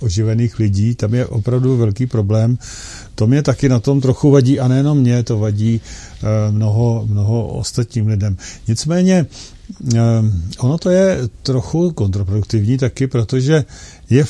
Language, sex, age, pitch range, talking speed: Czech, male, 50-69, 115-150 Hz, 135 wpm